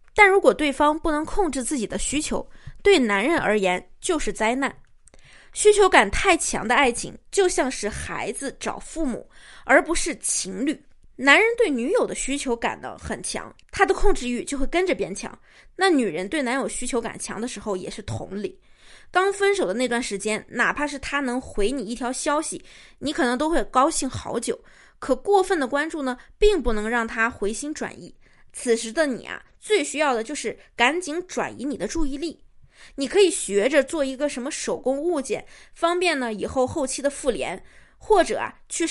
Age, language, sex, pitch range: 20-39, Chinese, female, 240-335 Hz